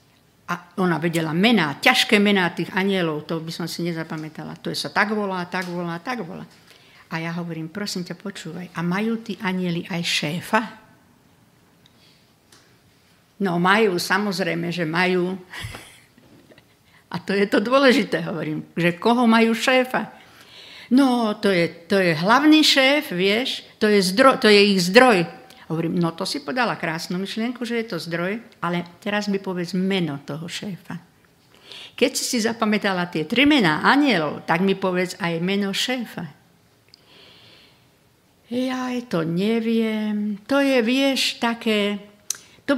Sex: female